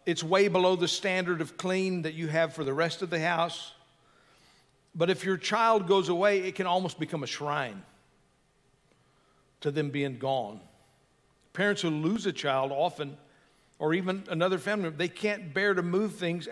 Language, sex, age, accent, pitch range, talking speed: English, male, 50-69, American, 150-195 Hz, 175 wpm